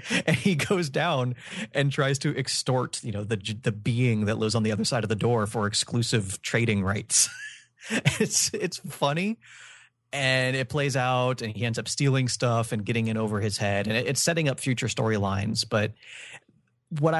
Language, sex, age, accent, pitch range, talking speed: English, male, 30-49, American, 110-135 Hz, 190 wpm